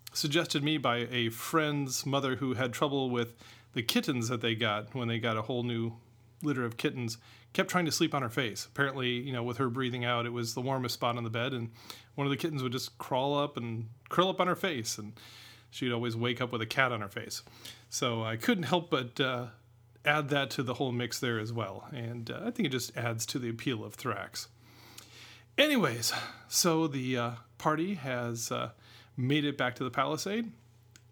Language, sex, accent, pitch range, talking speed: English, male, American, 120-150 Hz, 215 wpm